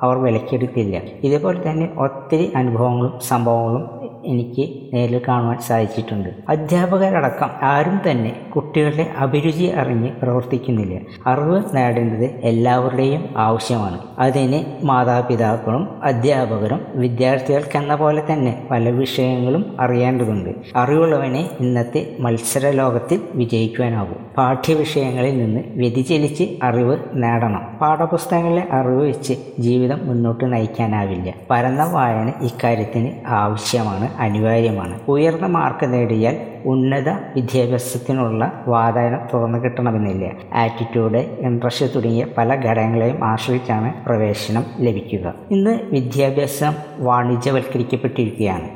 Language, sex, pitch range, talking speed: Malayalam, female, 115-140 Hz, 85 wpm